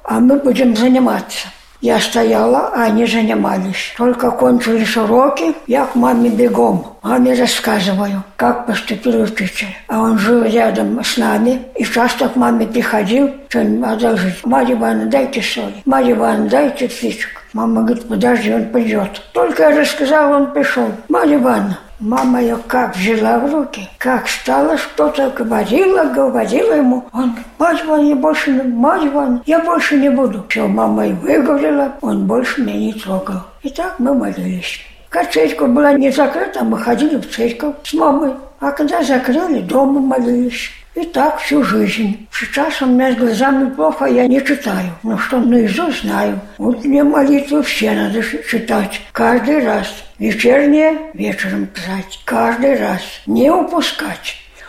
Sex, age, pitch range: female, 60-79, 220-280 Hz